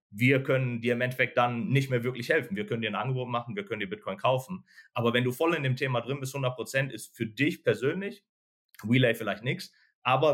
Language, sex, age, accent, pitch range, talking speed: English, male, 40-59, German, 110-130 Hz, 230 wpm